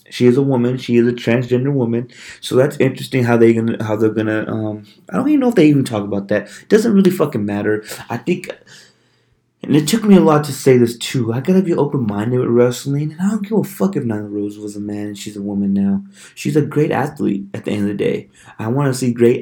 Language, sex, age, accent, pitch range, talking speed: English, male, 20-39, American, 110-135 Hz, 265 wpm